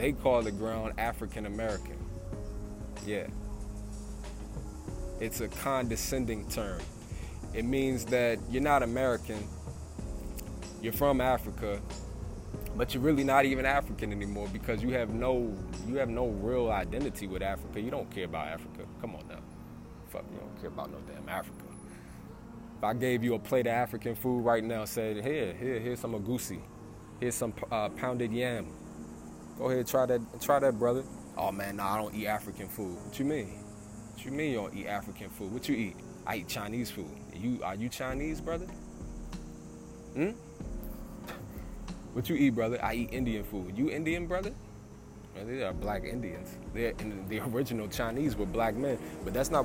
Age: 20-39